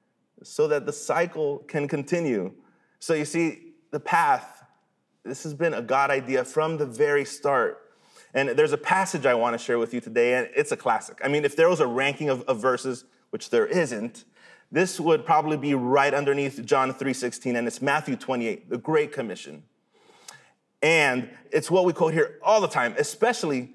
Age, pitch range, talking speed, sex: 30-49, 140-200 Hz, 185 wpm, male